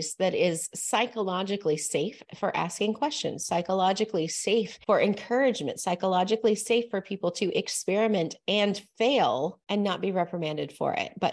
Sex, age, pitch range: female, 30-49, 170-235 Hz